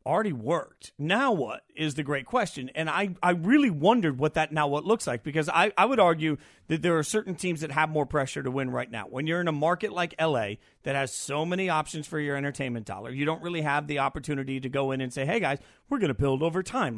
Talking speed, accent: 255 wpm, American